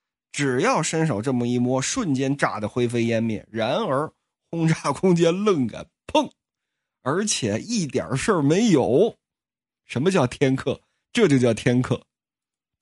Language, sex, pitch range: Chinese, male, 155-255 Hz